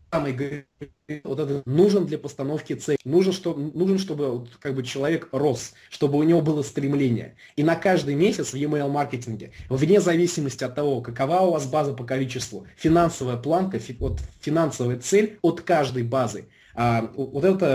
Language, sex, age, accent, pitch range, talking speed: Russian, male, 20-39, native, 130-180 Hz, 165 wpm